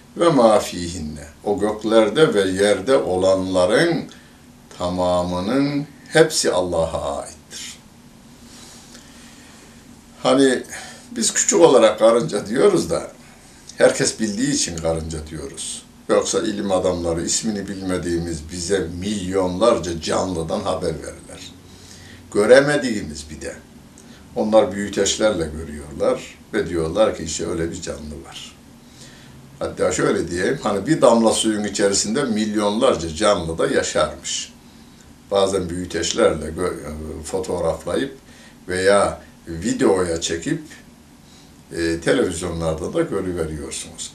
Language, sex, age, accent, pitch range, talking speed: Turkish, male, 60-79, native, 85-110 Hz, 95 wpm